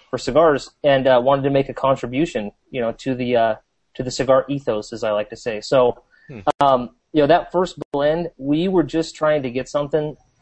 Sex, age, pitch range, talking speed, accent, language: male, 30-49, 125-145 Hz, 215 wpm, American, English